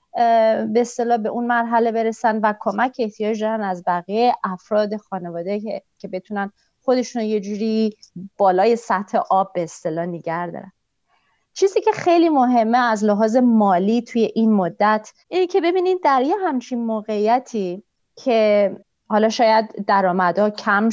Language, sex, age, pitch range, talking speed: Persian, female, 30-49, 195-245 Hz, 125 wpm